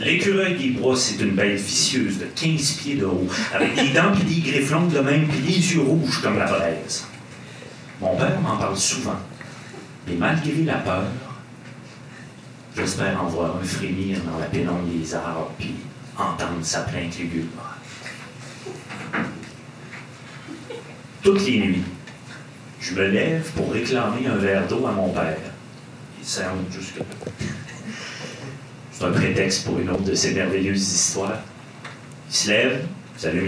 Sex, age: male, 40-59